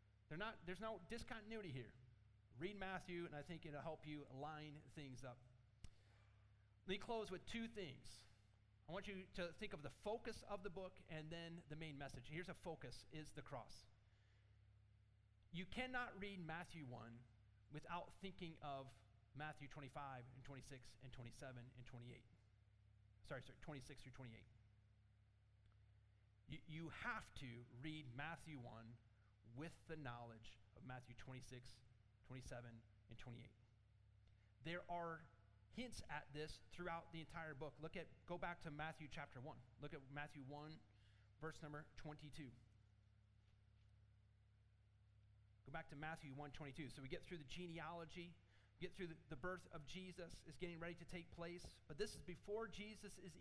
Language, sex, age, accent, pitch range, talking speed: English, male, 30-49, American, 105-170 Hz, 150 wpm